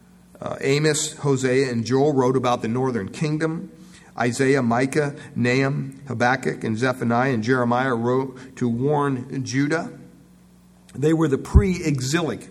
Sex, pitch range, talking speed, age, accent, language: male, 130-170 Hz, 125 wpm, 50-69, American, English